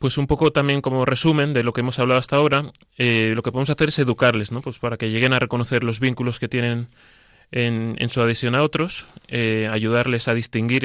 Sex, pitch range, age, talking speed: male, 110-130 Hz, 20-39, 225 wpm